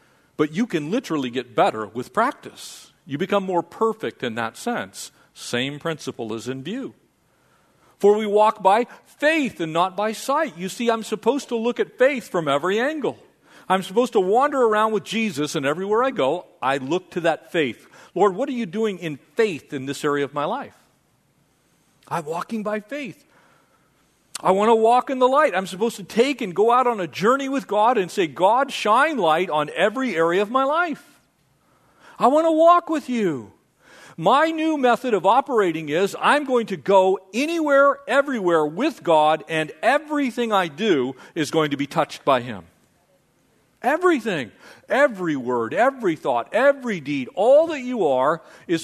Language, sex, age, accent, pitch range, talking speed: English, male, 50-69, American, 170-270 Hz, 180 wpm